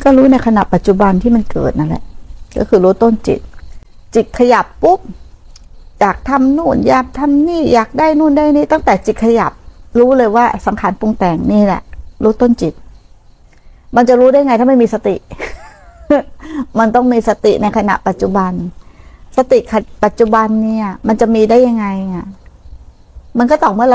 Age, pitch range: 60-79, 190-255 Hz